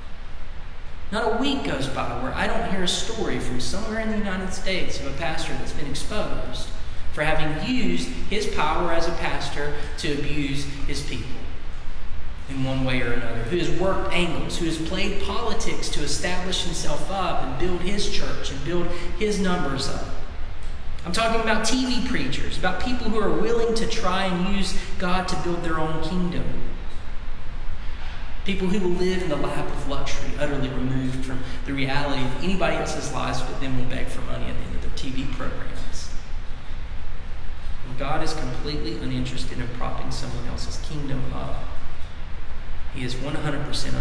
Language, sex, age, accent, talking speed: English, male, 40-59, American, 170 wpm